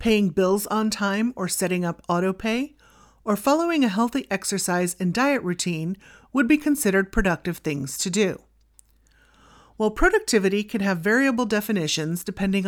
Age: 40-59